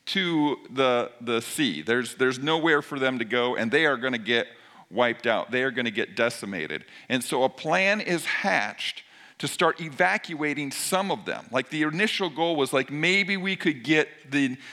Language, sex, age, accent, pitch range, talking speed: English, male, 50-69, American, 155-195 Hz, 195 wpm